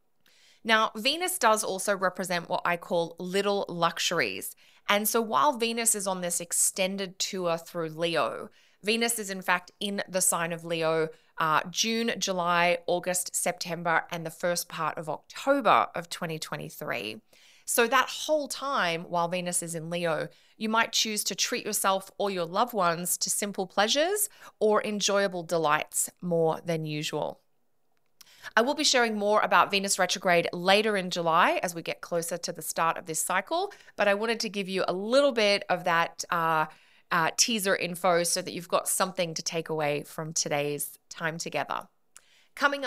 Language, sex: English, female